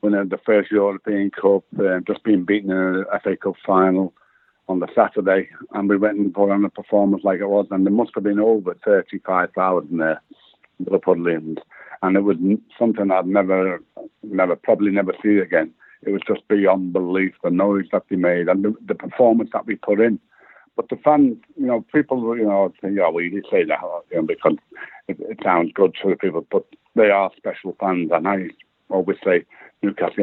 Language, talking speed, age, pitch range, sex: English, 205 wpm, 60-79, 95-105 Hz, male